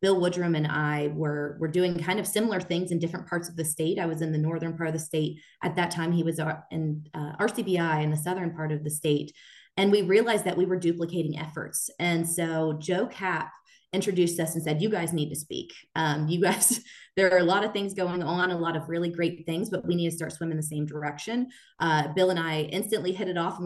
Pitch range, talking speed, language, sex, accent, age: 155-175 Hz, 245 wpm, English, female, American, 20-39